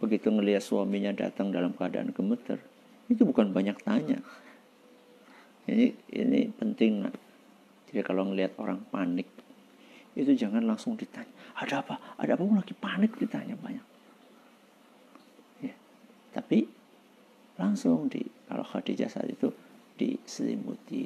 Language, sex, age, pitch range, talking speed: Indonesian, male, 50-69, 225-260 Hz, 115 wpm